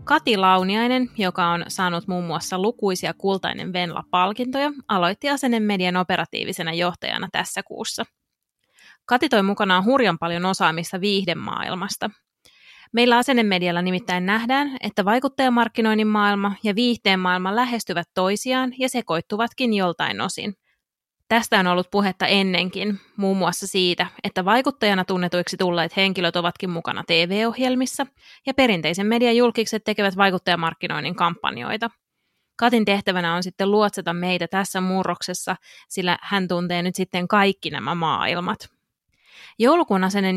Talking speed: 115 wpm